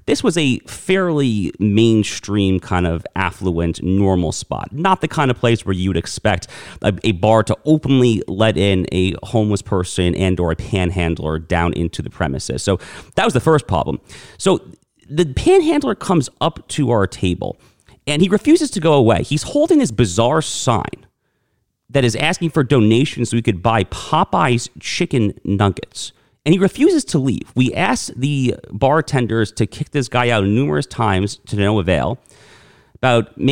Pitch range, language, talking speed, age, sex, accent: 100-145 Hz, English, 165 wpm, 30-49, male, American